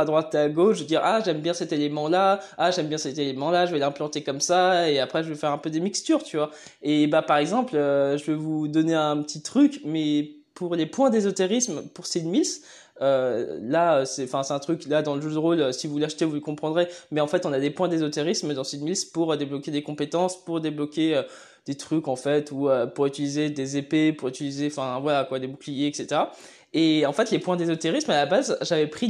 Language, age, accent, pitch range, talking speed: French, 20-39, French, 150-185 Hz, 245 wpm